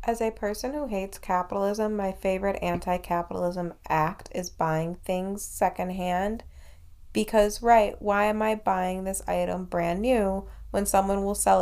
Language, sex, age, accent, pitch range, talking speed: English, female, 20-39, American, 160-205 Hz, 145 wpm